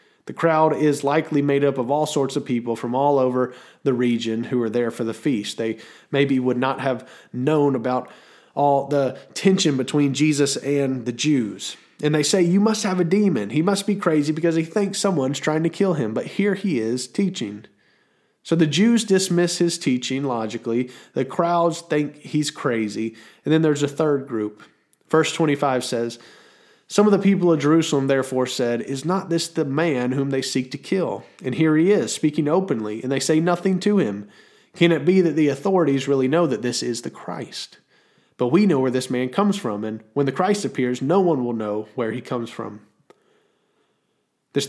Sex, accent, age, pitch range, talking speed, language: male, American, 30-49, 125-170 Hz, 200 wpm, English